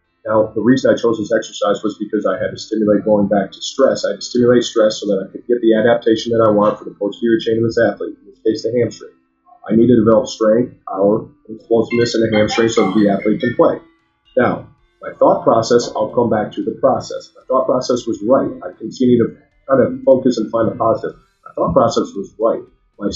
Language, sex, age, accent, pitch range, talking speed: English, male, 40-59, American, 110-125 Hz, 240 wpm